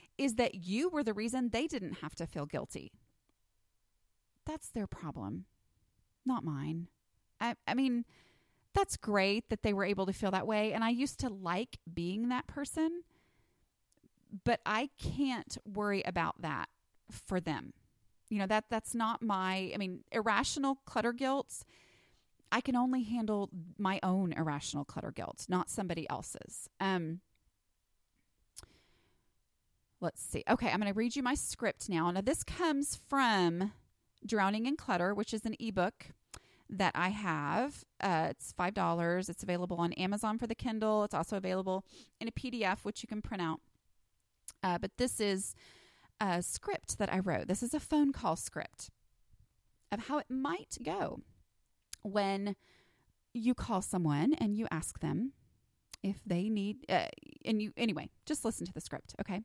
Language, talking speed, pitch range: English, 160 wpm, 180-235 Hz